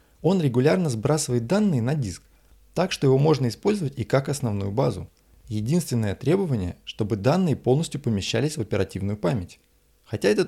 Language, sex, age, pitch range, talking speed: Russian, male, 20-39, 100-145 Hz, 150 wpm